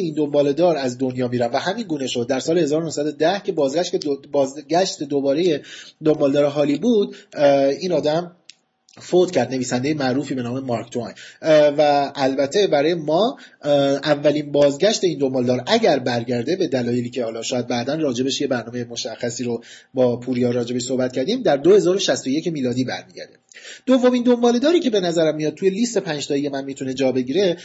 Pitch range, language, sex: 135-190 Hz, Persian, male